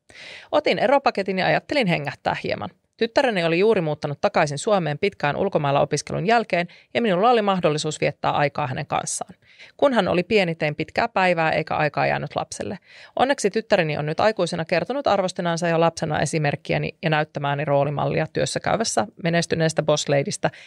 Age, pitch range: 30-49, 160-220 Hz